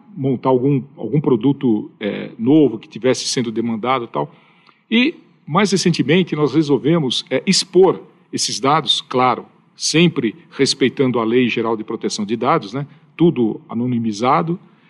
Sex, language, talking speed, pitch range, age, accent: male, Portuguese, 135 wpm, 130-170 Hz, 50-69, Brazilian